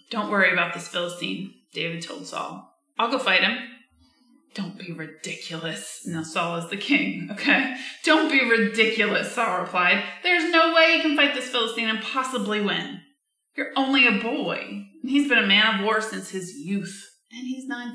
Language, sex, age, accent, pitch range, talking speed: English, female, 20-39, American, 195-255 Hz, 180 wpm